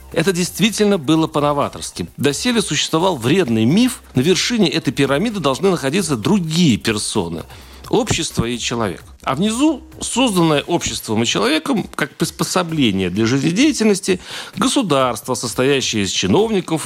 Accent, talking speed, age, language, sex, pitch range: native, 120 wpm, 40-59, Russian, male, 125-190 Hz